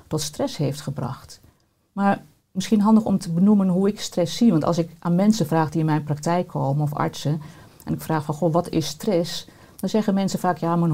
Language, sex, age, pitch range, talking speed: Dutch, female, 50-69, 160-195 Hz, 220 wpm